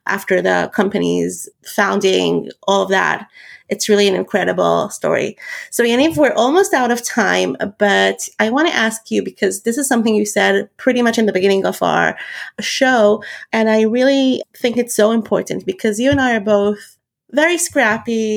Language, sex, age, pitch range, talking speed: English, female, 30-49, 200-245 Hz, 175 wpm